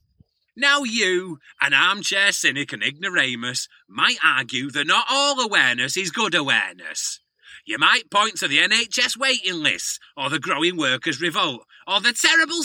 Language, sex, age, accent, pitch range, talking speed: English, male, 30-49, British, 185-300 Hz, 150 wpm